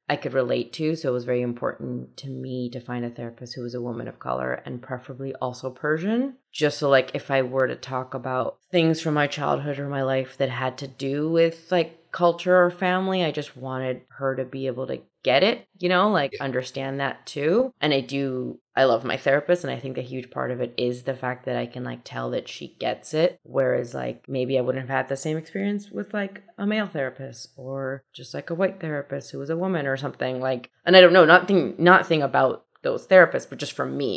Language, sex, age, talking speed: English, female, 20-39, 235 wpm